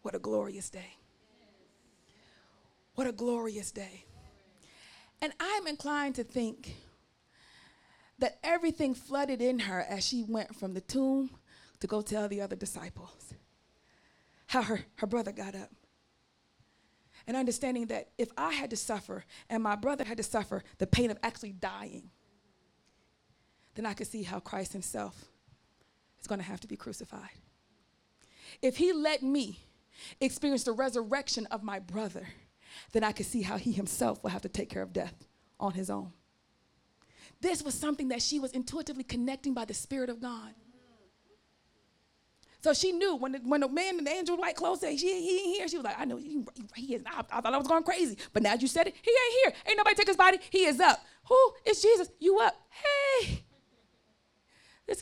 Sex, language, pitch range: female, English, 215-330 Hz